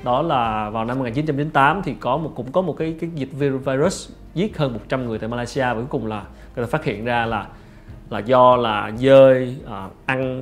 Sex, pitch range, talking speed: male, 115-145 Hz, 215 wpm